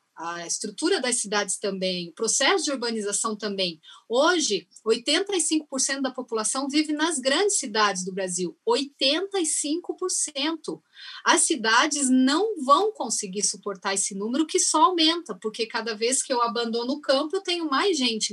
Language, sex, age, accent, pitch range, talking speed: Portuguese, female, 30-49, Brazilian, 225-315 Hz, 145 wpm